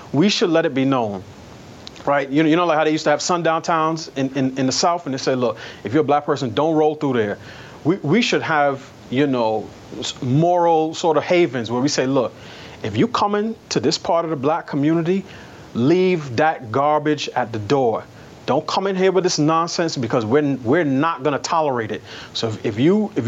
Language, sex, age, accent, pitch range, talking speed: English, male, 30-49, American, 130-170 Hz, 220 wpm